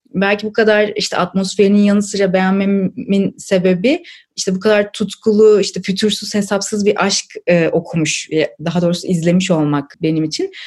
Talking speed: 145 wpm